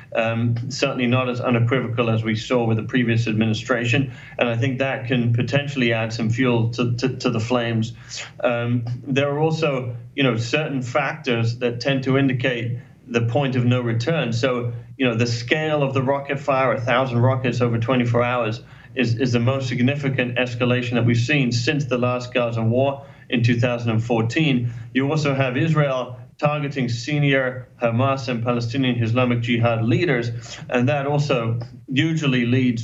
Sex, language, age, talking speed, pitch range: male, English, 30-49, 165 wpm, 120-135 Hz